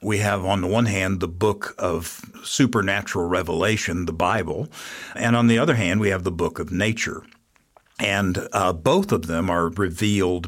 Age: 60-79